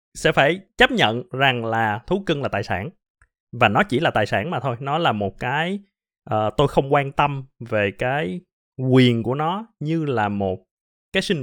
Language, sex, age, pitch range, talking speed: Vietnamese, male, 20-39, 115-175 Hz, 200 wpm